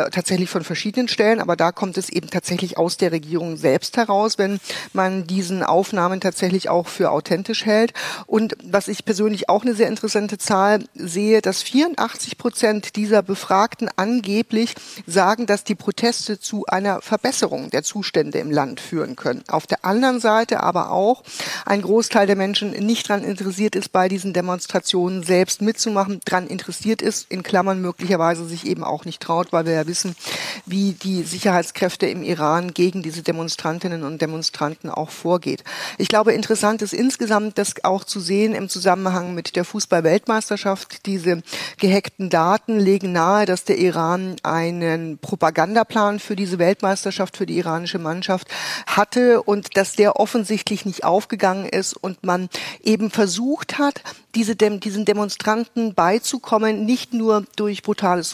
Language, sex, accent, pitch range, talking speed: German, female, German, 180-215 Hz, 155 wpm